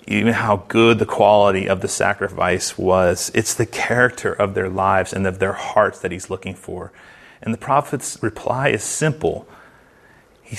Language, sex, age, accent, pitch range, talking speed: English, male, 30-49, American, 105-125 Hz, 170 wpm